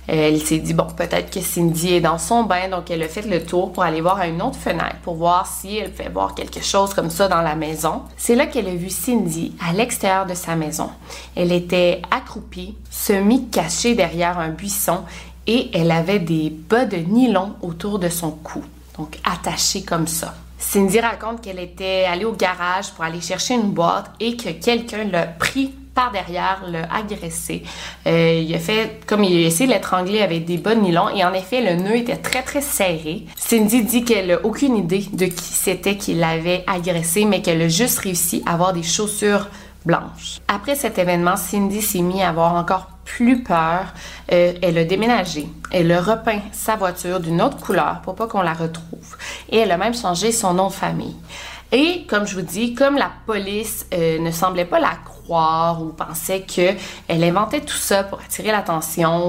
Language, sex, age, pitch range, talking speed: French, female, 20-39, 175-215 Hz, 200 wpm